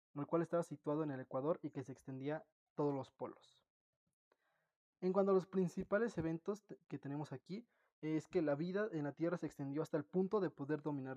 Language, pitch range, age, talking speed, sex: Spanish, 145-180 Hz, 20-39, 210 wpm, male